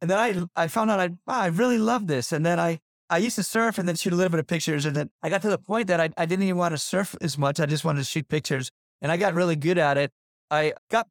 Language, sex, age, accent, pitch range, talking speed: English, male, 30-49, American, 140-170 Hz, 320 wpm